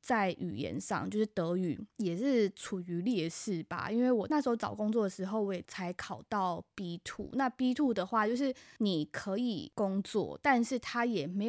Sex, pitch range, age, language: female, 185-220 Hz, 20-39, Chinese